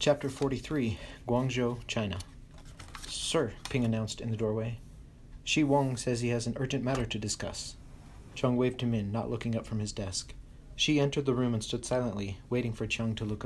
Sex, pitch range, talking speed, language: male, 110-130 Hz, 185 wpm, English